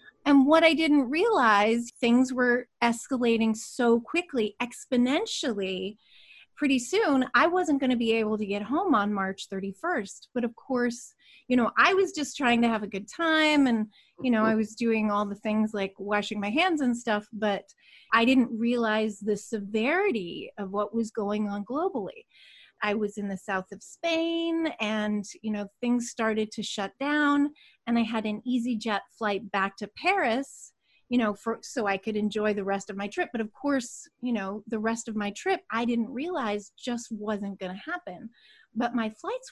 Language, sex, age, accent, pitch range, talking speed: English, female, 30-49, American, 210-270 Hz, 190 wpm